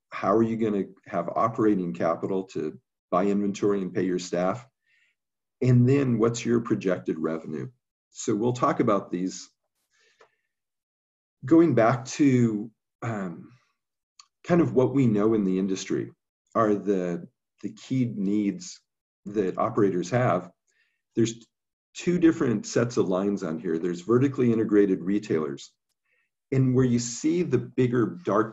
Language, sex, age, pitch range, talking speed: English, male, 50-69, 95-120 Hz, 135 wpm